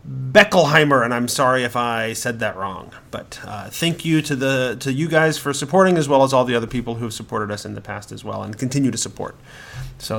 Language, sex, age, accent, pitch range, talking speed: English, male, 30-49, American, 125-165 Hz, 240 wpm